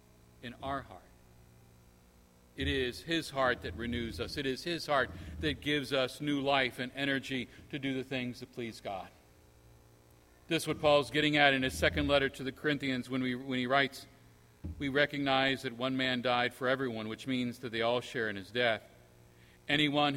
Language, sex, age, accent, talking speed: English, male, 50-69, American, 190 wpm